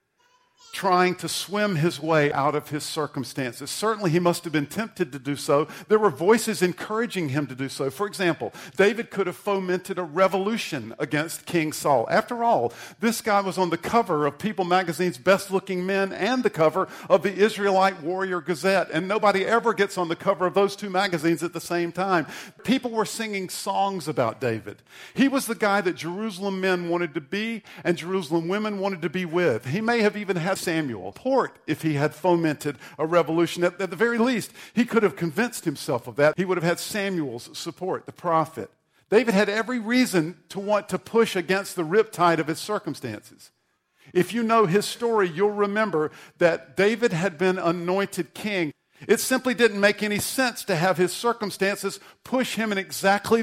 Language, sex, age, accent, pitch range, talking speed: English, male, 50-69, American, 170-210 Hz, 190 wpm